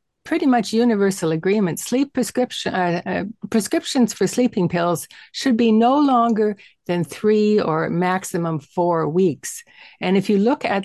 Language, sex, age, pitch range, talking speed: English, female, 60-79, 170-225 Hz, 150 wpm